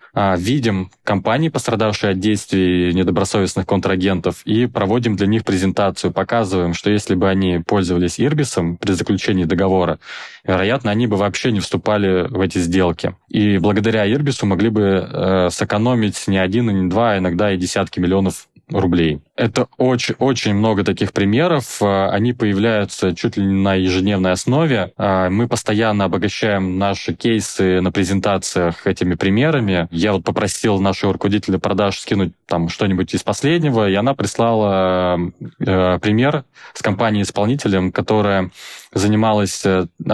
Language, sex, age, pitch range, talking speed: Russian, male, 20-39, 95-110 Hz, 135 wpm